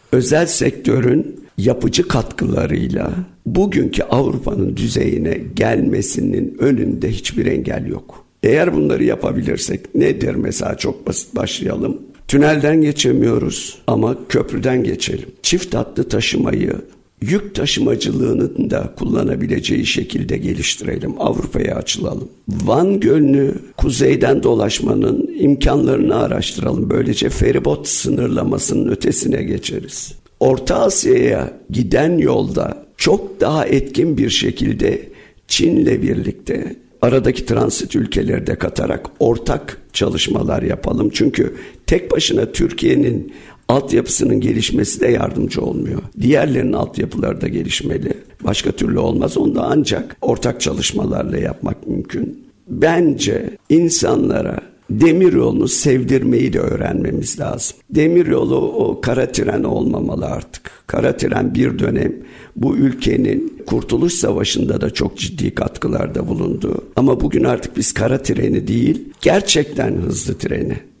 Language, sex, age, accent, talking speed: Turkish, male, 60-79, native, 105 wpm